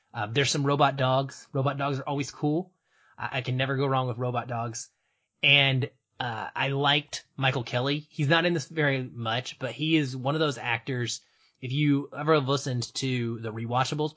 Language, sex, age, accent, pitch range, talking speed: English, male, 20-39, American, 120-150 Hz, 195 wpm